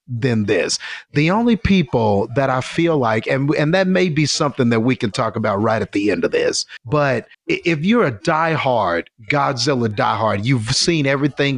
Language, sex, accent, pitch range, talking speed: English, male, American, 120-150 Hz, 185 wpm